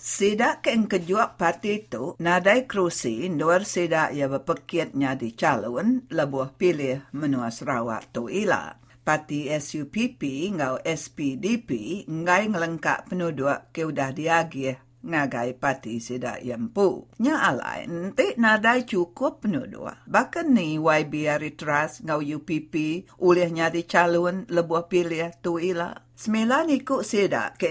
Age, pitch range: 50-69, 145-195 Hz